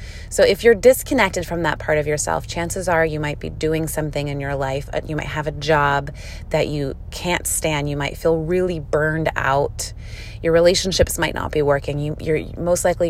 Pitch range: 110-165 Hz